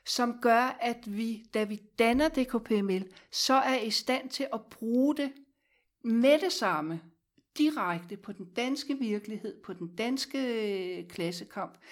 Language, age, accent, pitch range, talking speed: Danish, 60-79, native, 215-265 Hz, 140 wpm